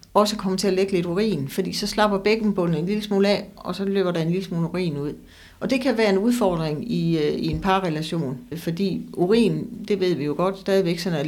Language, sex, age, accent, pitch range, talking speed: Danish, female, 60-79, native, 165-200 Hz, 230 wpm